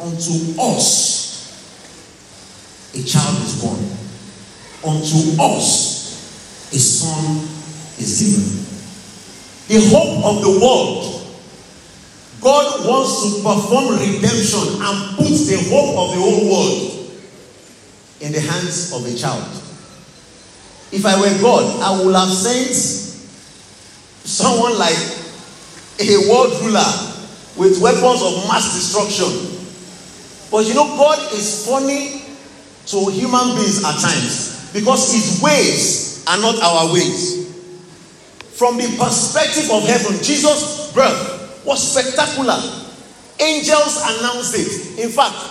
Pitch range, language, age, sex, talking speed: 180-255 Hz, English, 50-69, male, 115 wpm